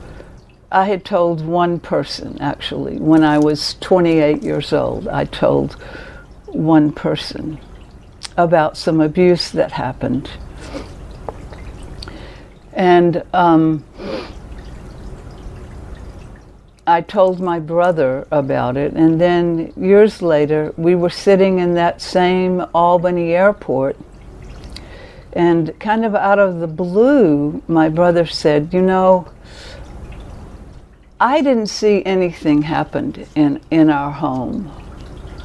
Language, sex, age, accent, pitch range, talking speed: English, female, 60-79, American, 135-175 Hz, 105 wpm